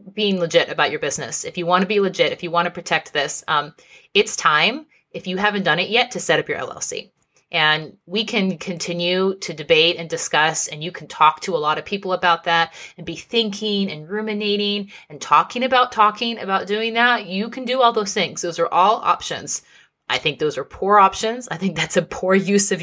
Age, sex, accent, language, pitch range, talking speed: 30-49, female, American, English, 160-210 Hz, 225 wpm